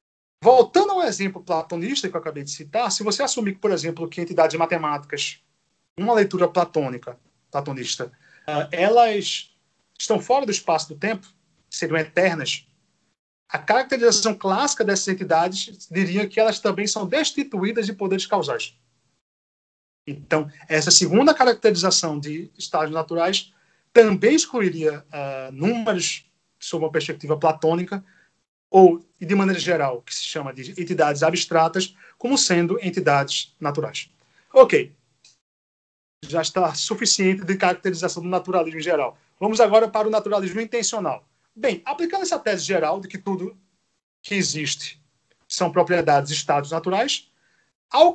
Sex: male